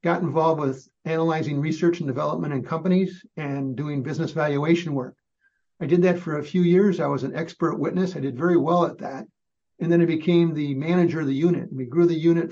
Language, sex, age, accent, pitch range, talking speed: English, male, 60-79, American, 145-170 Hz, 215 wpm